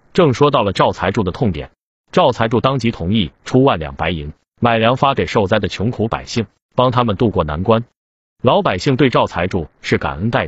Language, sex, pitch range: Chinese, male, 95-130 Hz